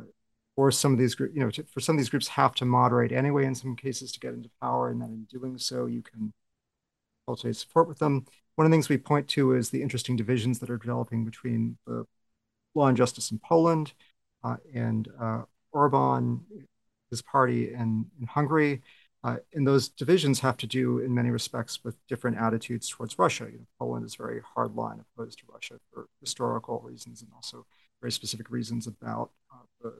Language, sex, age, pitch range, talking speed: English, male, 40-59, 110-135 Hz, 200 wpm